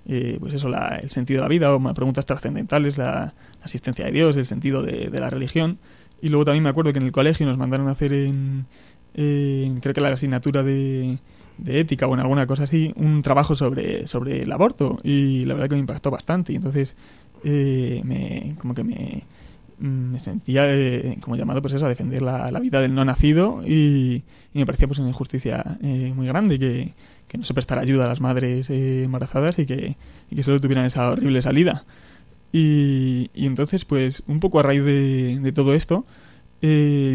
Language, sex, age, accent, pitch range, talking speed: Spanish, male, 20-39, Spanish, 130-145 Hz, 210 wpm